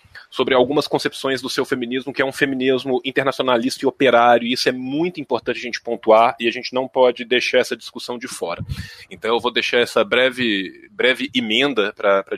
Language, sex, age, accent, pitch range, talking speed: Portuguese, male, 20-39, Brazilian, 115-135 Hz, 200 wpm